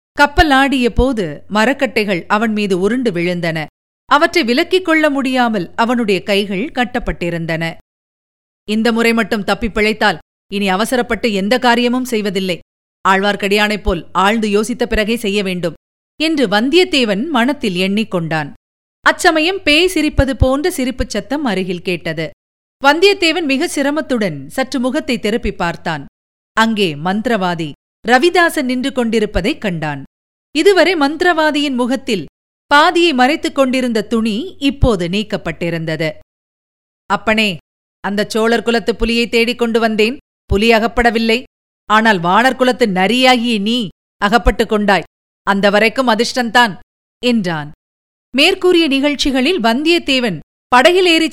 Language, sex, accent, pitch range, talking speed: Tamil, female, native, 200-270 Hz, 105 wpm